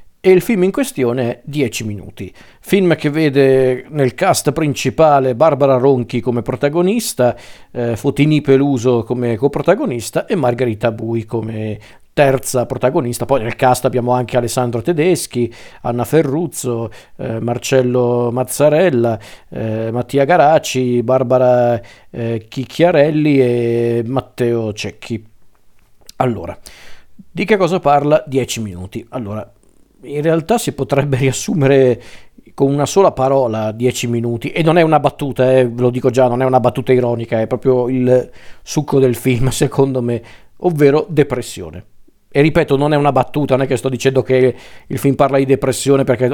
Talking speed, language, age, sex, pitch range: 145 wpm, Italian, 50-69, male, 120-140 Hz